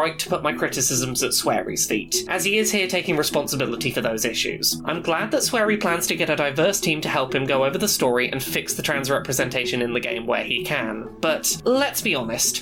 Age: 20-39